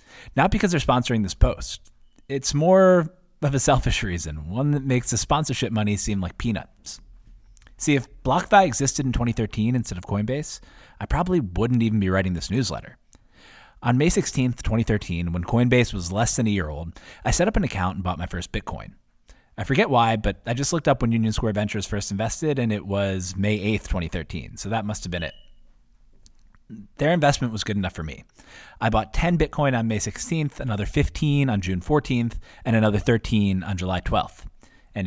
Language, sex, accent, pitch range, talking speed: English, male, American, 95-125 Hz, 190 wpm